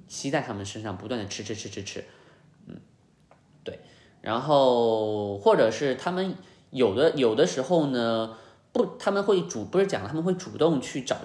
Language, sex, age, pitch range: Chinese, male, 20-39, 110-150 Hz